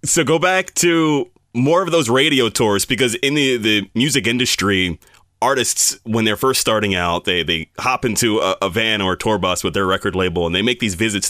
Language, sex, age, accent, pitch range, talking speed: English, male, 30-49, American, 100-135 Hz, 220 wpm